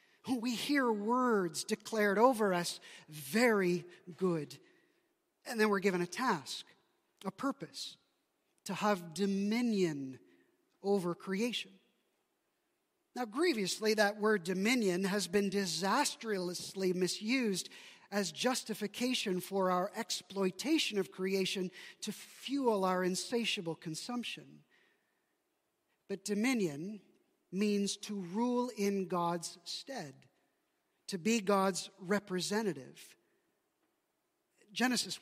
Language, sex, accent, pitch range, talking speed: English, male, American, 185-245 Hz, 95 wpm